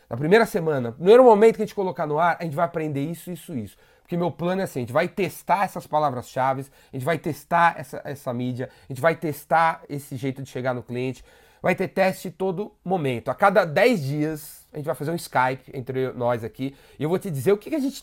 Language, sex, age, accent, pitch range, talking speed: Portuguese, male, 30-49, Brazilian, 135-175 Hz, 240 wpm